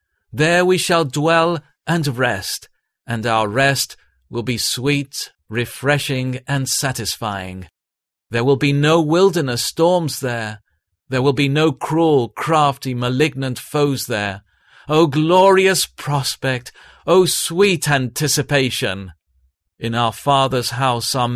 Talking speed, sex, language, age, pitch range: 120 wpm, male, English, 40-59, 120-160 Hz